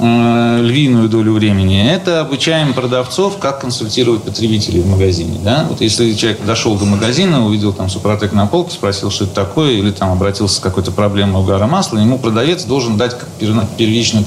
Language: Russian